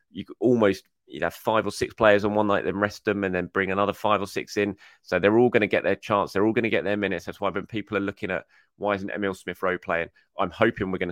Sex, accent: male, British